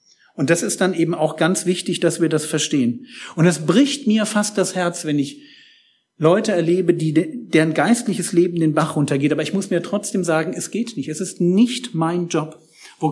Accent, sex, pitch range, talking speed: German, male, 150-205 Hz, 205 wpm